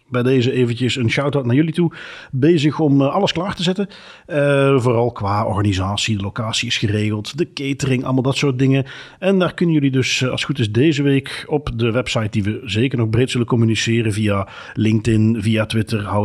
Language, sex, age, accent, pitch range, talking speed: Dutch, male, 40-59, Dutch, 115-155 Hz, 200 wpm